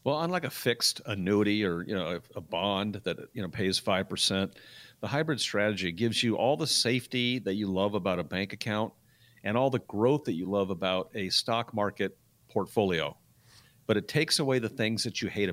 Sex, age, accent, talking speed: male, 50-69, American, 195 wpm